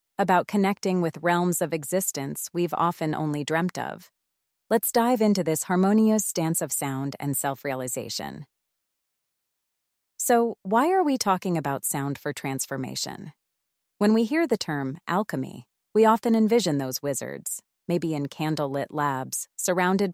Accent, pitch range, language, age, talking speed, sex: American, 140-200 Hz, English, 30-49, 135 wpm, female